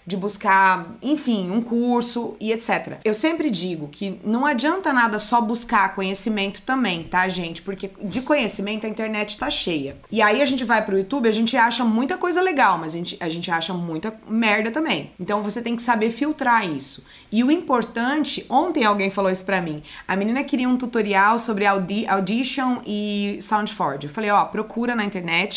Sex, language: female, Portuguese